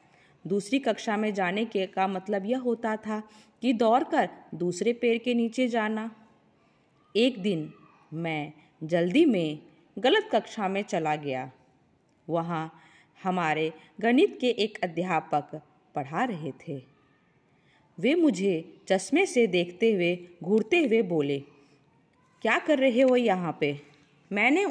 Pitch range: 165-225 Hz